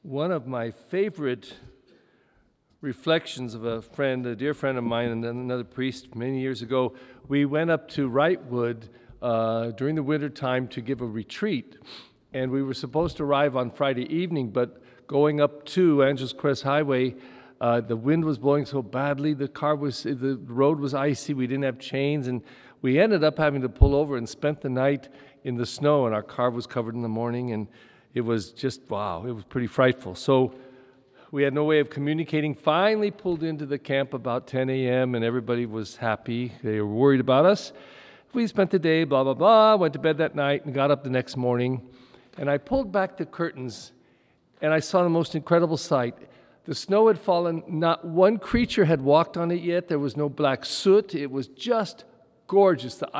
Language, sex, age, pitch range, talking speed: English, male, 50-69, 125-155 Hz, 200 wpm